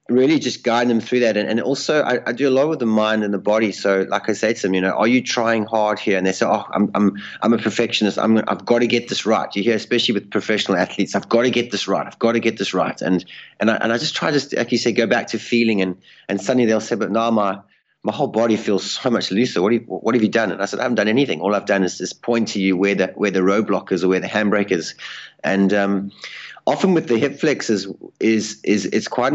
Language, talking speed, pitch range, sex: English, 290 wpm, 100-120 Hz, male